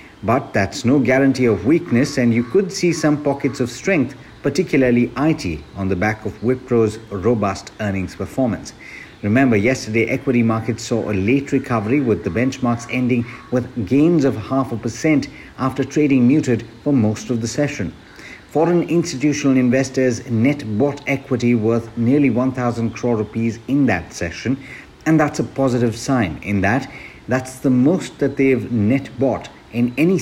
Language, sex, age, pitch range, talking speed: English, male, 60-79, 105-135 Hz, 160 wpm